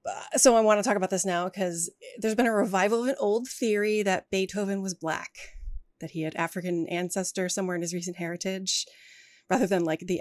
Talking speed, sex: 205 wpm, female